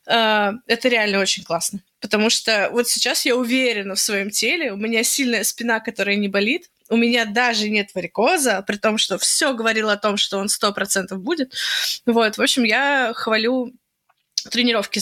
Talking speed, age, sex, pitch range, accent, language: 170 wpm, 20-39, female, 210-250 Hz, native, Russian